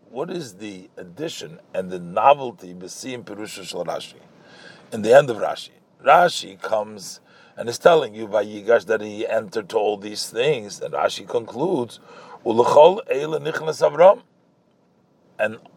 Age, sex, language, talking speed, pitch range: 50-69, male, English, 115 wpm, 115-190 Hz